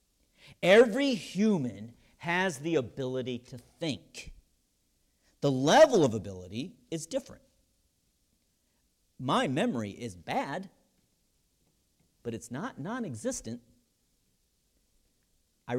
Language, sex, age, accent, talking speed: English, male, 50-69, American, 85 wpm